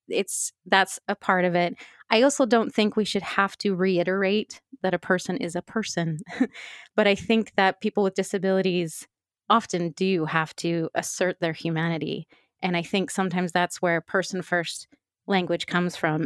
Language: English